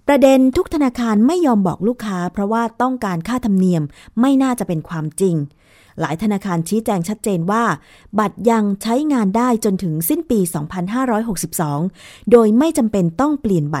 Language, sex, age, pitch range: Thai, female, 20-39, 175-235 Hz